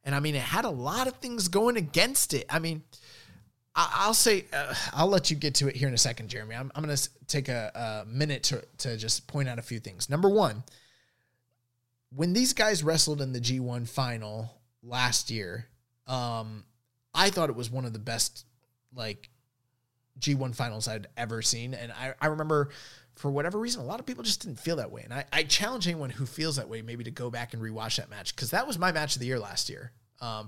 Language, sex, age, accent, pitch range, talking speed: English, male, 20-39, American, 120-160 Hz, 225 wpm